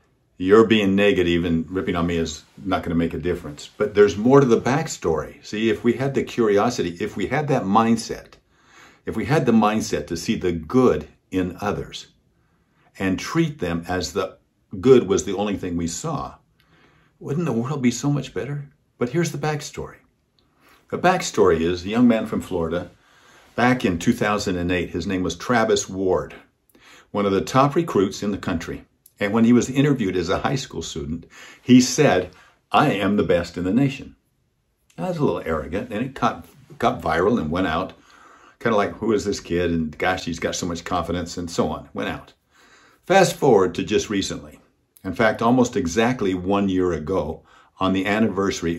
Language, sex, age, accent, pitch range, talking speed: English, male, 50-69, American, 85-115 Hz, 190 wpm